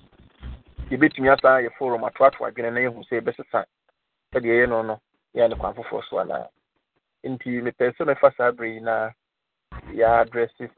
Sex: male